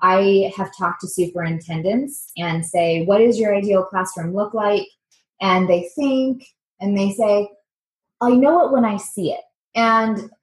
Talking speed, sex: 160 wpm, female